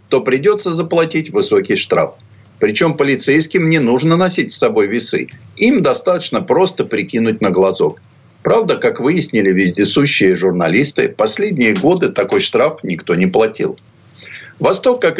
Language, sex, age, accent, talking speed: Russian, male, 50-69, native, 130 wpm